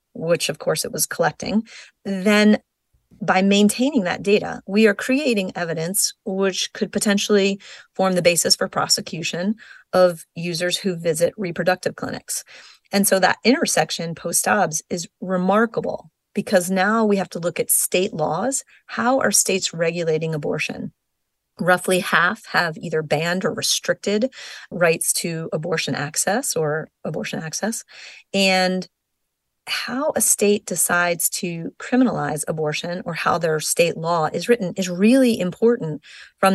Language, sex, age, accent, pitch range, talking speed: English, female, 30-49, American, 175-220 Hz, 135 wpm